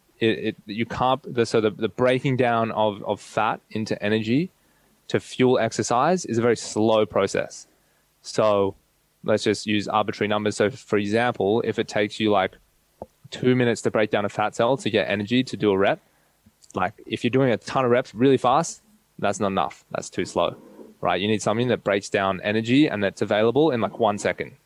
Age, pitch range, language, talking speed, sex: 20-39, 105-120 Hz, English, 200 wpm, male